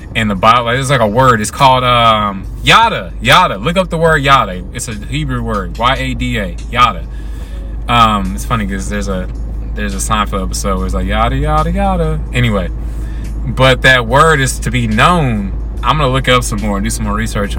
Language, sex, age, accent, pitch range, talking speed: English, male, 20-39, American, 105-130 Hz, 210 wpm